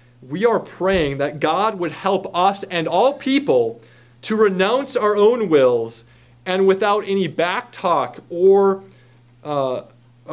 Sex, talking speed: male, 130 wpm